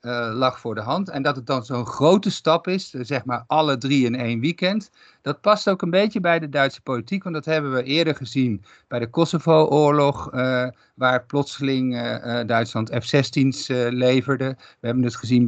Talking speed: 180 wpm